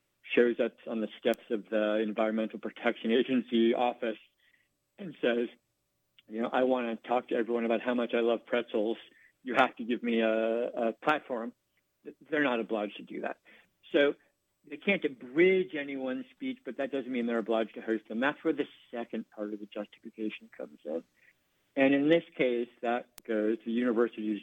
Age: 50-69